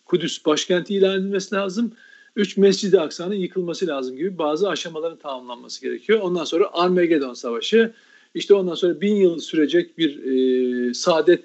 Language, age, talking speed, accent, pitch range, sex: Turkish, 50-69, 145 wpm, native, 165-230 Hz, male